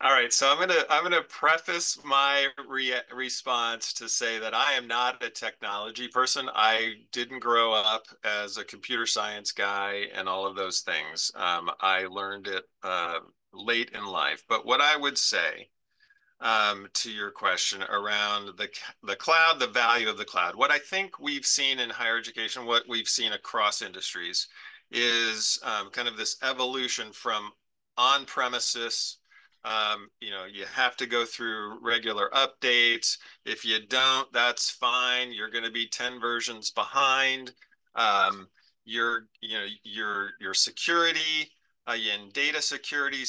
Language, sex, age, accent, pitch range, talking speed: English, male, 40-59, American, 110-135 Hz, 160 wpm